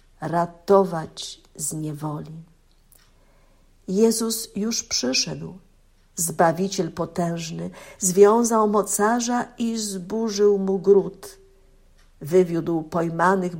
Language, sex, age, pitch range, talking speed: Polish, female, 50-69, 170-220 Hz, 70 wpm